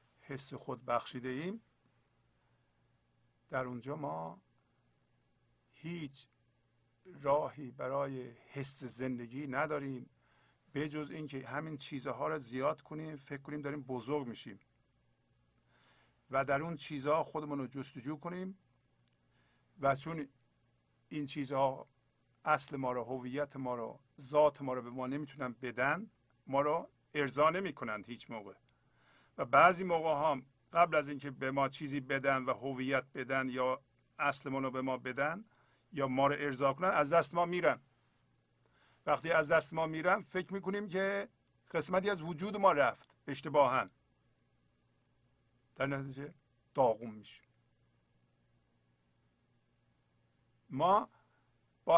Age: 50-69